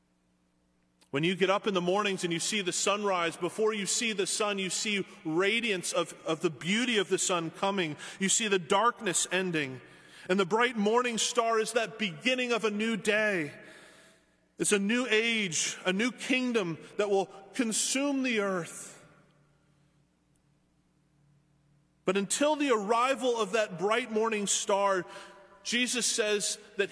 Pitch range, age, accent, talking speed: 170-220 Hz, 30-49, American, 155 wpm